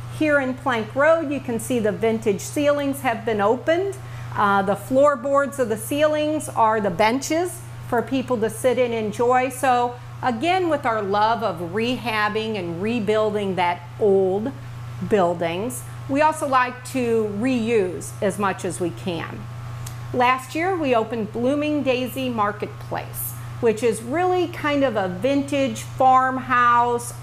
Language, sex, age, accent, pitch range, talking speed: English, female, 40-59, American, 190-260 Hz, 145 wpm